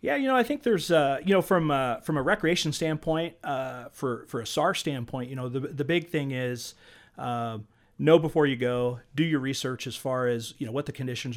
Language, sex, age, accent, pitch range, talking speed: English, male, 40-59, American, 110-130 Hz, 230 wpm